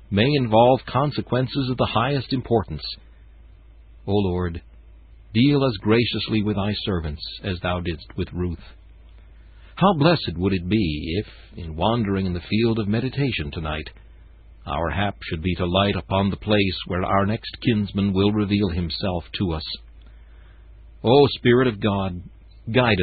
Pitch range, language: 85-115 Hz, English